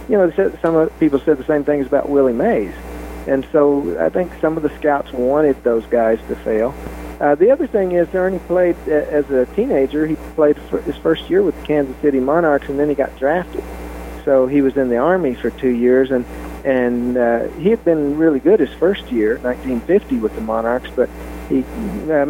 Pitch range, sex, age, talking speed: 120-145 Hz, male, 50-69, 205 wpm